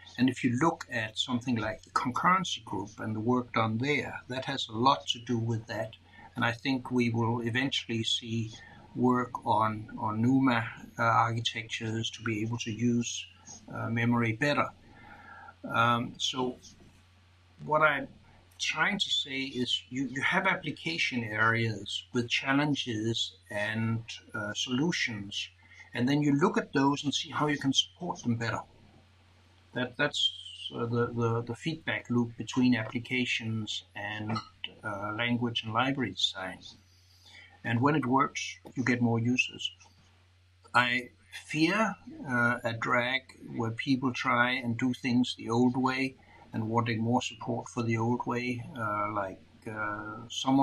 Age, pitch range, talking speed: 60-79, 110-130 Hz, 150 wpm